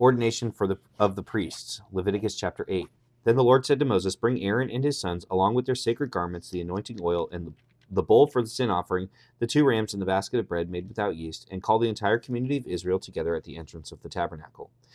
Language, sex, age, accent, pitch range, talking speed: English, male, 30-49, American, 95-125 Hz, 235 wpm